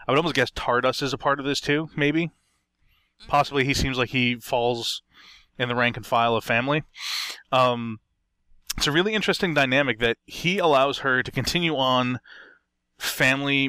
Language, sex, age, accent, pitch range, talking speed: English, male, 20-39, American, 115-145 Hz, 170 wpm